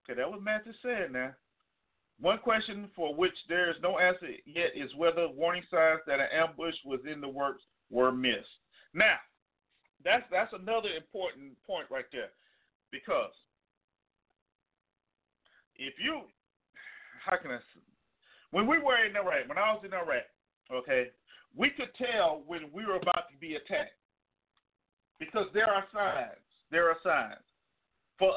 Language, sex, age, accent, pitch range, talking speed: English, male, 40-59, American, 165-240 Hz, 150 wpm